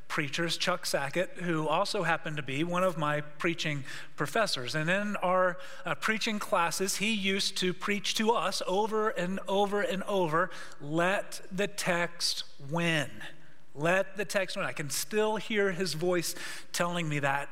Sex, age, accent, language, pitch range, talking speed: male, 30-49, American, English, 155-200 Hz, 160 wpm